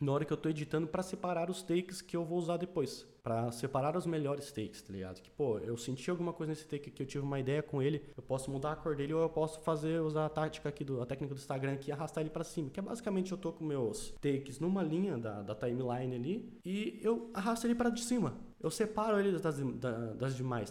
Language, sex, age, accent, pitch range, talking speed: Portuguese, male, 20-39, Brazilian, 130-180 Hz, 255 wpm